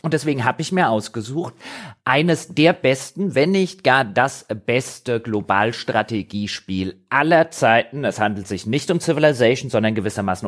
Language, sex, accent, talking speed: German, male, German, 145 wpm